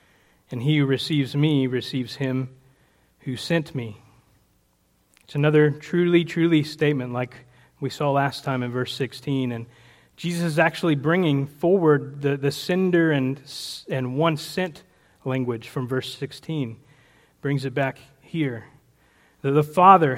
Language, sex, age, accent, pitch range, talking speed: English, male, 30-49, American, 130-160 Hz, 140 wpm